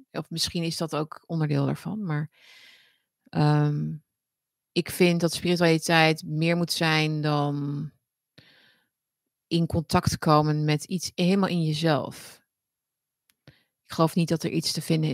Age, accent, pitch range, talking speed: 30-49, Dutch, 155-190 Hz, 130 wpm